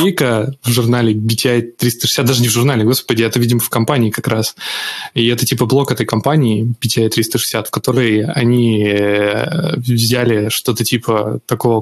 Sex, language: male, Russian